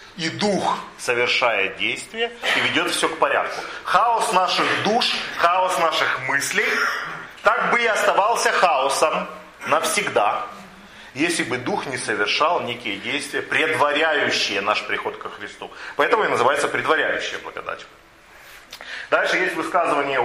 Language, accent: Russian, native